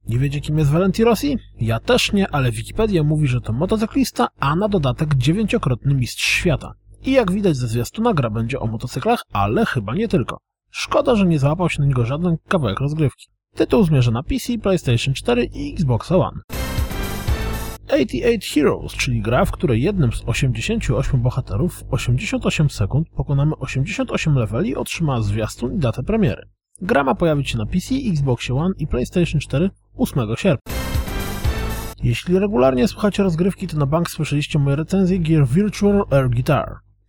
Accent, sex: native, male